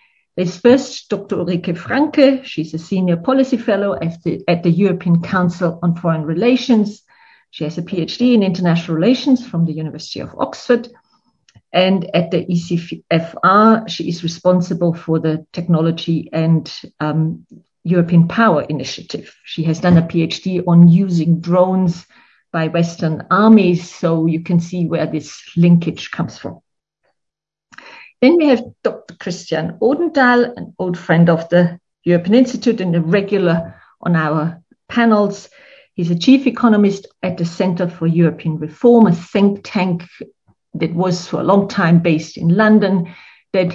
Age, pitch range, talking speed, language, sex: 50-69, 170-215 Hz, 145 wpm, English, female